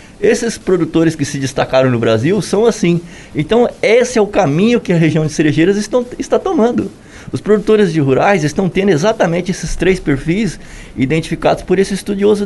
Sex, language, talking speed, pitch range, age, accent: male, Portuguese, 170 wpm, 125-190 Hz, 20-39, Brazilian